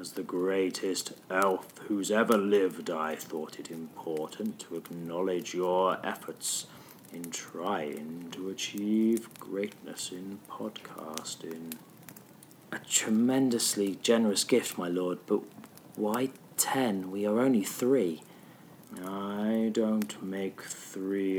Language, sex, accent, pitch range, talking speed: English, male, British, 80-100 Hz, 110 wpm